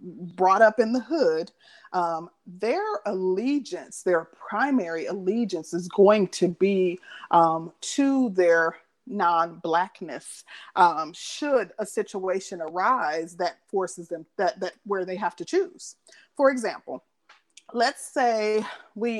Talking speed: 120 wpm